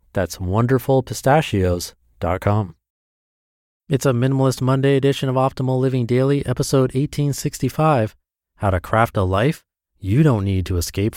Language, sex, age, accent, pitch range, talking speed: English, male, 30-49, American, 95-130 Hz, 130 wpm